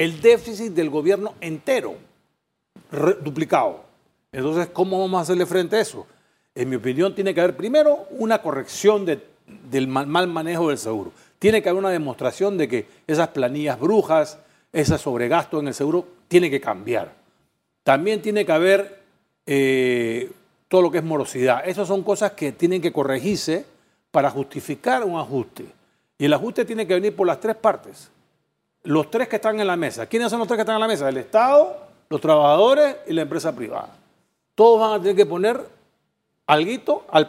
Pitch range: 150-210 Hz